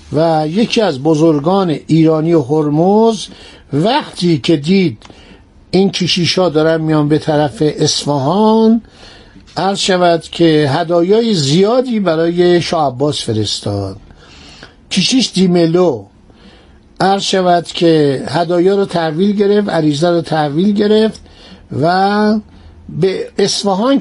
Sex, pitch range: male, 145-195 Hz